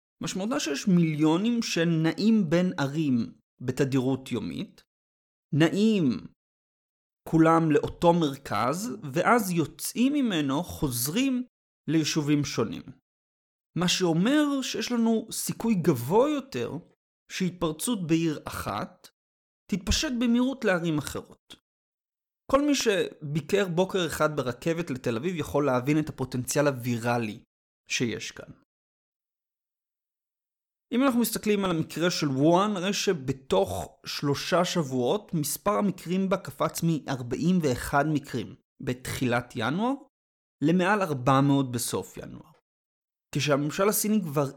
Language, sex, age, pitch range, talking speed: Hebrew, male, 30-49, 140-195 Hz, 100 wpm